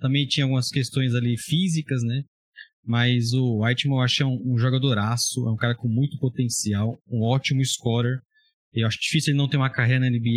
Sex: male